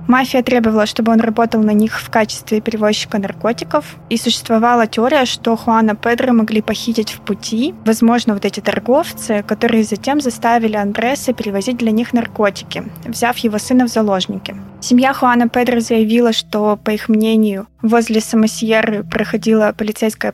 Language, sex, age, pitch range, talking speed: Russian, female, 20-39, 215-240 Hz, 150 wpm